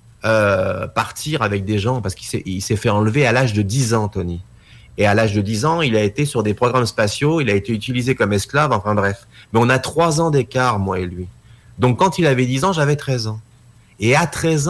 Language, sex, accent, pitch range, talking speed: French, male, French, 110-145 Hz, 245 wpm